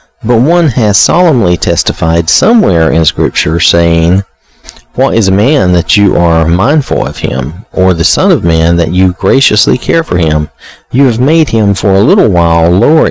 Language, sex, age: English, male, 40-59